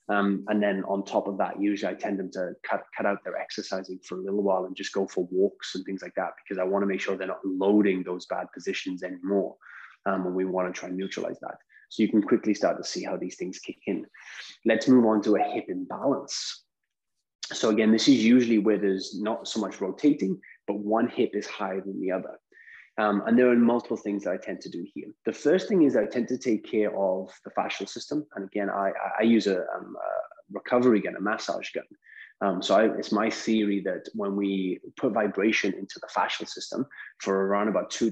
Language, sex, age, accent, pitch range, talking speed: English, male, 20-39, British, 95-115 Hz, 230 wpm